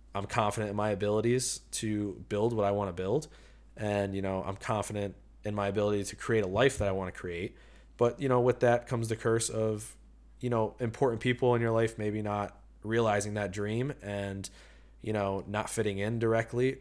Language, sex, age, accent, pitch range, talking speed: English, male, 20-39, American, 95-115 Hz, 205 wpm